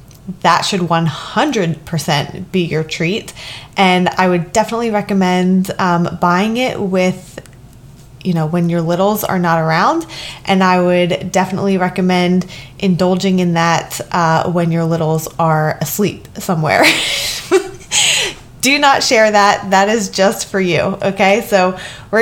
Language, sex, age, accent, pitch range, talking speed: English, female, 20-39, American, 170-205 Hz, 135 wpm